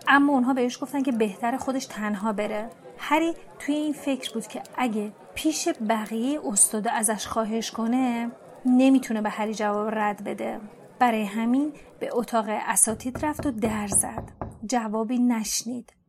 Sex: female